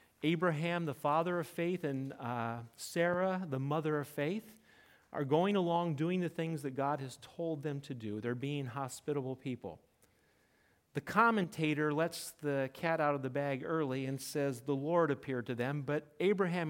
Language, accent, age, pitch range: English, American, 40-59, 135-180 Hz